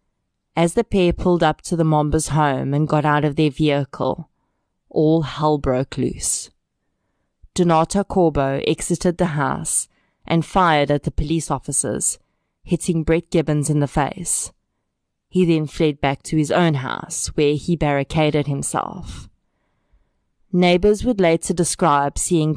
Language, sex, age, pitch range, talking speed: English, female, 20-39, 145-170 Hz, 140 wpm